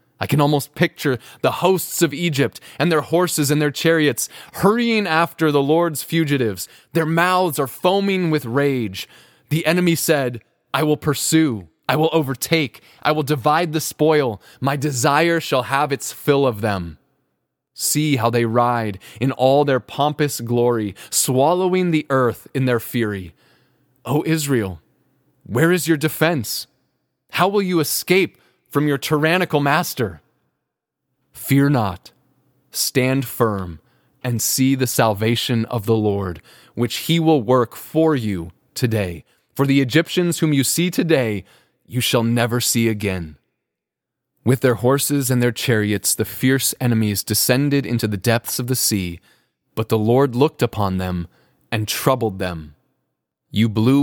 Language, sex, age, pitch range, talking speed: English, male, 20-39, 115-155 Hz, 150 wpm